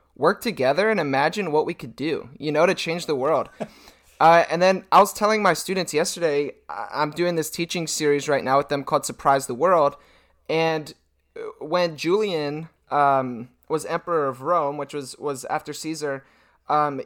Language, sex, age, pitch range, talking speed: English, male, 20-39, 145-185 Hz, 175 wpm